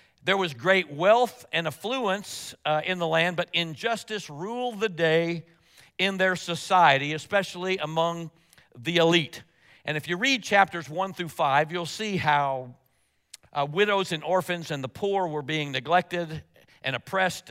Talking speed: 155 wpm